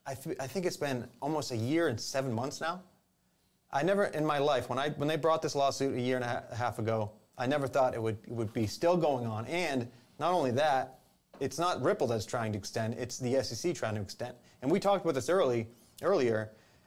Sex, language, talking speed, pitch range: male, English, 235 wpm, 115-140 Hz